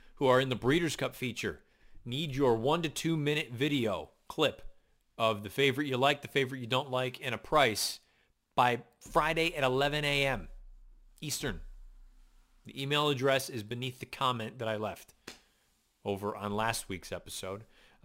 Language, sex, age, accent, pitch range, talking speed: English, male, 30-49, American, 105-135 Hz, 165 wpm